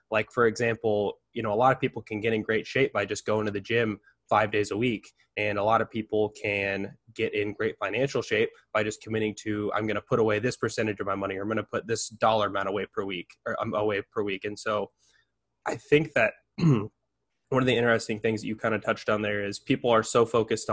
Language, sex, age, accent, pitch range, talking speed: English, male, 10-29, American, 105-120 Hz, 250 wpm